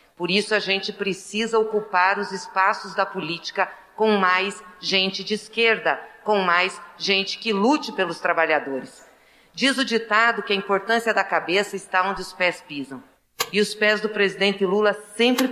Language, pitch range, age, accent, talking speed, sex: Portuguese, 185-215 Hz, 40-59, Brazilian, 160 wpm, female